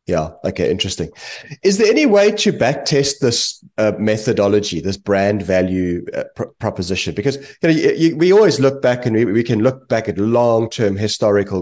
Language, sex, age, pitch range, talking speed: English, male, 30-49, 100-125 Hz, 185 wpm